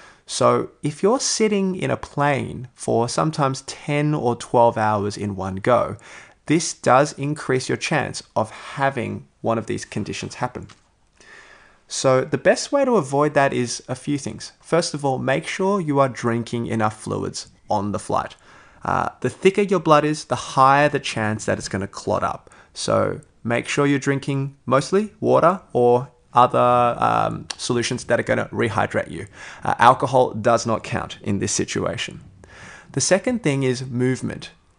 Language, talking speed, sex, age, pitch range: English, 165 wpm, male, 20-39, 110-145 Hz